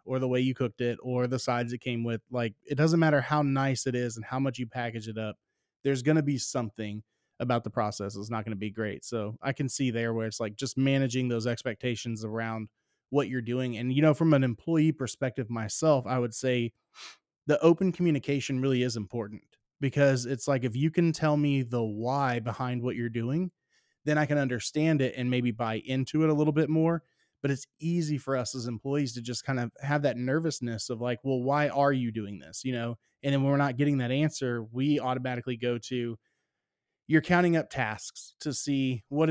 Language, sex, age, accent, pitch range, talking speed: English, male, 20-39, American, 120-140 Hz, 220 wpm